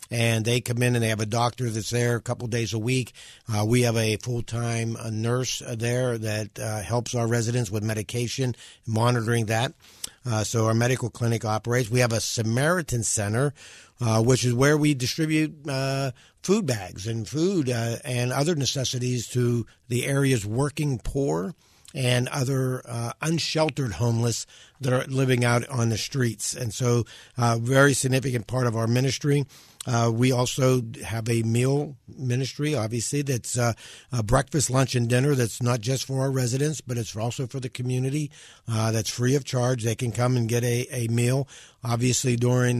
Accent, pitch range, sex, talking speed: American, 115-135 Hz, male, 180 wpm